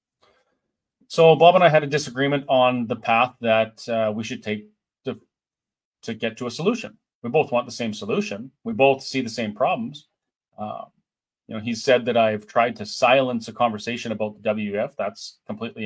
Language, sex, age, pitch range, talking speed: English, male, 30-49, 105-125 Hz, 190 wpm